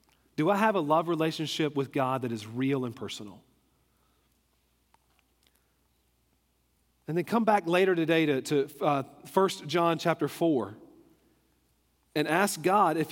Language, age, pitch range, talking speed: English, 40-59, 135-170 Hz, 135 wpm